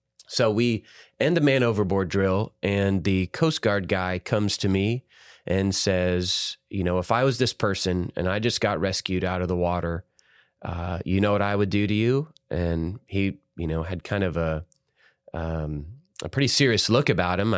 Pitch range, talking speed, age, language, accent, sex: 90-120 Hz, 195 wpm, 30-49, English, American, male